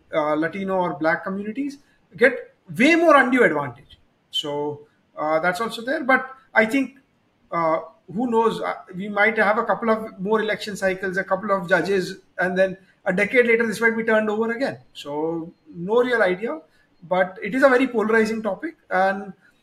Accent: Indian